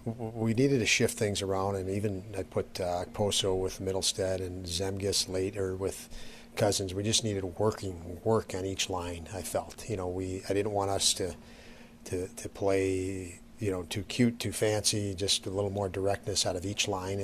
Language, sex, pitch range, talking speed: English, male, 95-105 Hz, 200 wpm